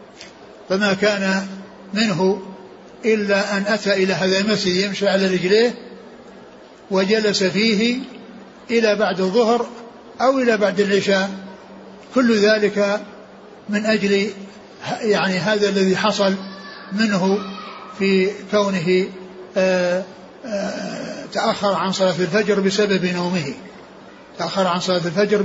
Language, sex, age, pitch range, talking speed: Arabic, male, 60-79, 190-210 Hz, 100 wpm